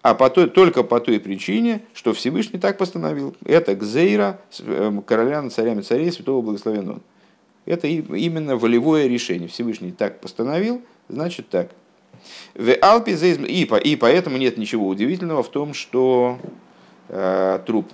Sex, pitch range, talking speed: male, 100-155 Hz, 125 wpm